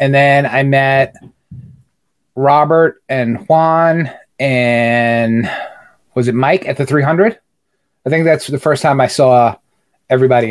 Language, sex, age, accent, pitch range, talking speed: English, male, 30-49, American, 120-145 Hz, 130 wpm